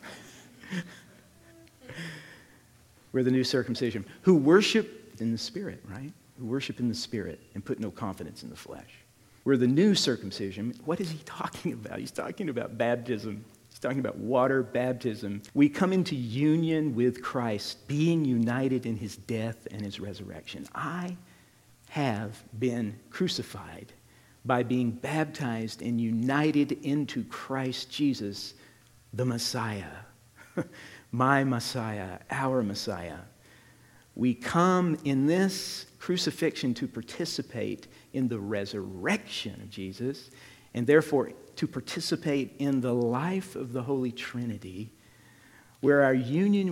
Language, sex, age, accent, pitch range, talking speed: English, male, 50-69, American, 115-150 Hz, 125 wpm